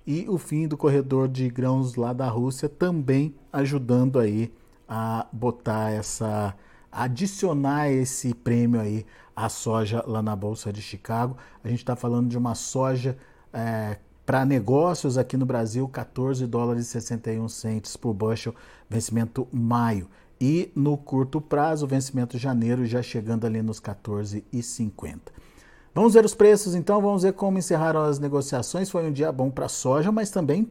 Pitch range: 120-150 Hz